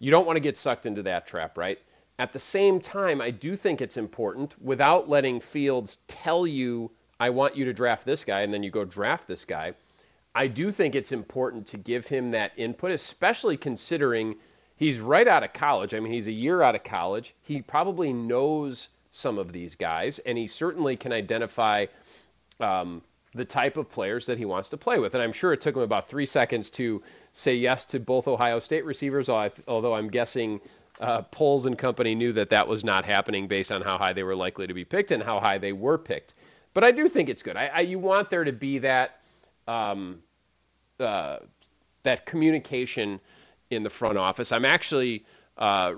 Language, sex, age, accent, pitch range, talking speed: English, male, 40-59, American, 105-140 Hz, 205 wpm